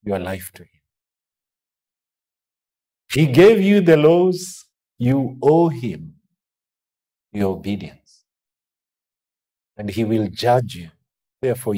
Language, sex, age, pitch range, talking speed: English, male, 50-69, 85-130 Hz, 100 wpm